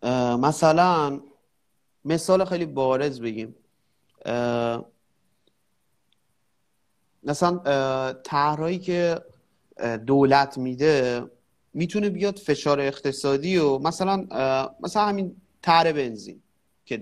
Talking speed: 75 wpm